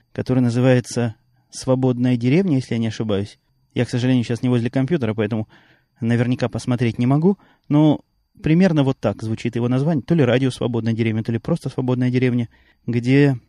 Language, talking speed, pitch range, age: Russian, 170 wpm, 120-145 Hz, 20-39